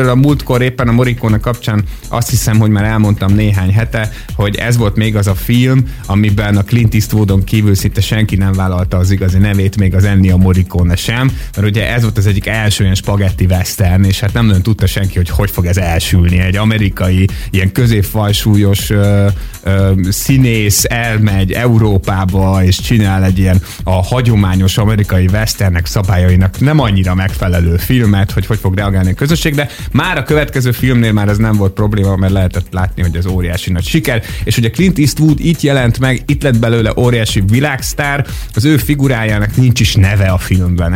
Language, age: Hungarian, 30-49